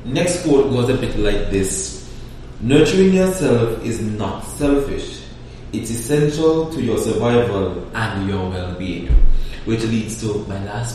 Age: 20-39